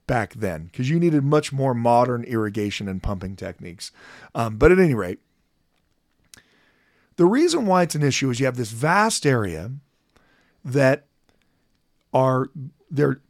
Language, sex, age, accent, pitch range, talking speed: English, male, 40-59, American, 105-145 Hz, 145 wpm